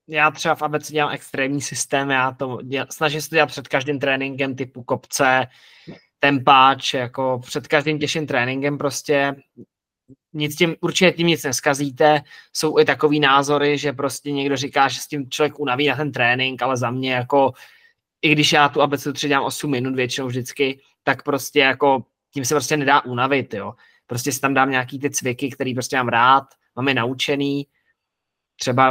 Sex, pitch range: male, 125-145 Hz